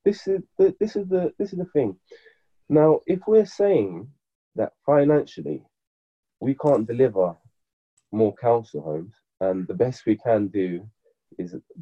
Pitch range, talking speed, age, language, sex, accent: 95-145 Hz, 145 wpm, 20-39, English, male, British